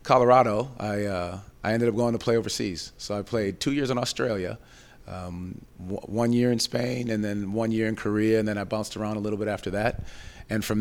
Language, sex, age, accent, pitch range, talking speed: English, male, 40-59, American, 100-115 Hz, 230 wpm